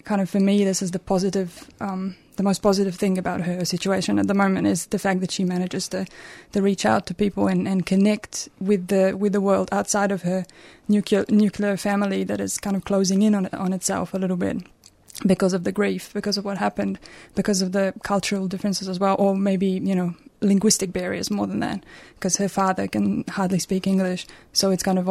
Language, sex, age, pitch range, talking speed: English, female, 20-39, 185-200 Hz, 220 wpm